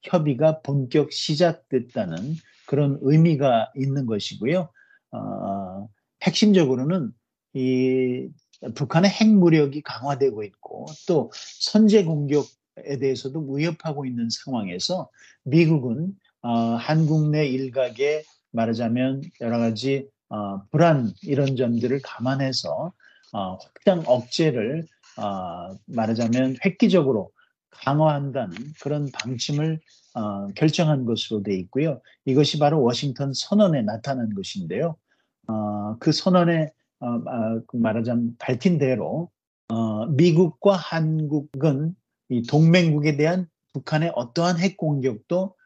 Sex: male